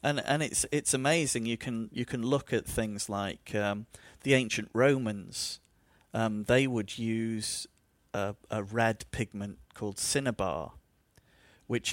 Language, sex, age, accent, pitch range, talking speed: English, male, 40-59, British, 105-125 Hz, 140 wpm